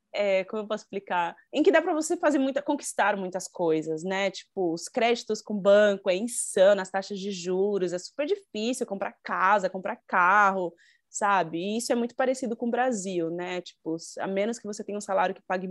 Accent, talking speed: Brazilian, 195 wpm